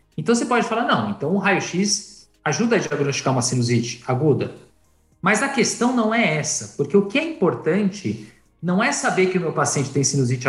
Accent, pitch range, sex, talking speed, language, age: Brazilian, 140-200 Hz, male, 195 wpm, Portuguese, 50-69